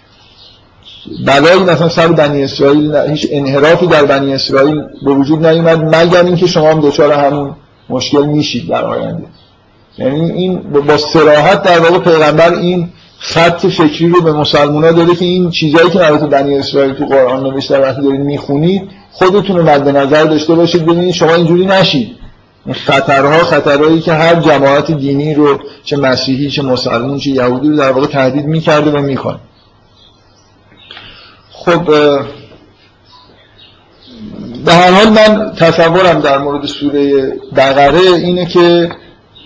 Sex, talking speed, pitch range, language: male, 145 wpm, 135-165 Hz, Persian